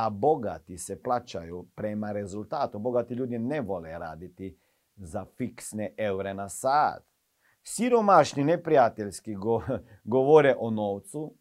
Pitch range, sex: 100-145 Hz, male